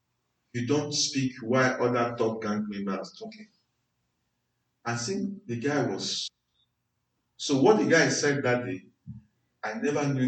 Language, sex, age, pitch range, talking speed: English, male, 50-69, 115-150 Hz, 140 wpm